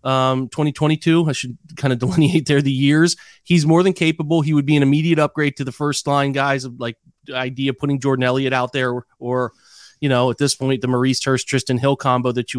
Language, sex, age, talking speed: English, male, 30-49, 240 wpm